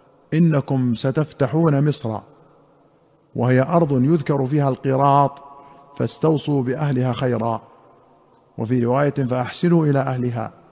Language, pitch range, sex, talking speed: Arabic, 125-145 Hz, male, 90 wpm